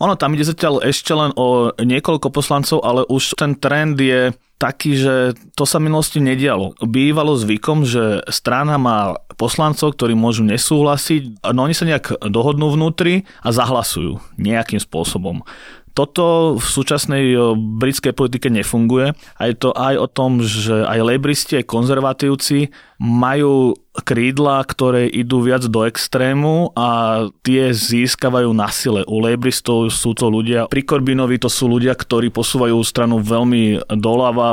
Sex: male